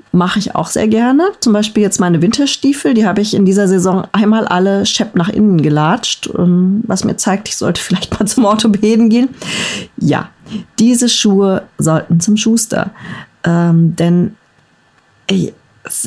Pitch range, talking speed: 180-230 Hz, 155 wpm